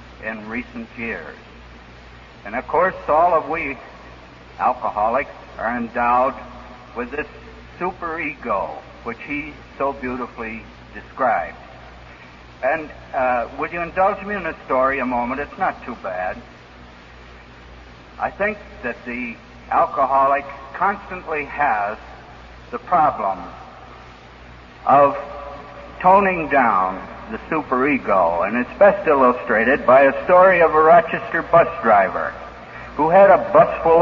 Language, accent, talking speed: English, American, 115 wpm